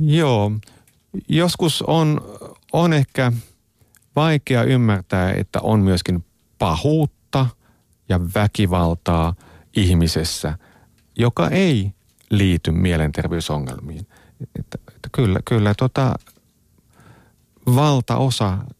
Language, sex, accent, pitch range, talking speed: Finnish, male, native, 85-120 Hz, 65 wpm